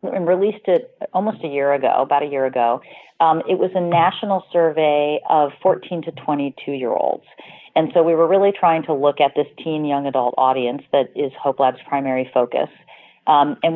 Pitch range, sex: 135-170 Hz, female